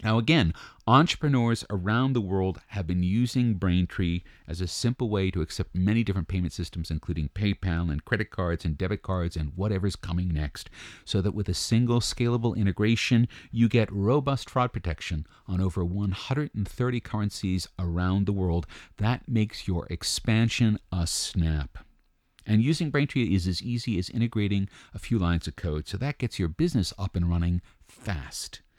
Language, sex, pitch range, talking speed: English, male, 85-115 Hz, 165 wpm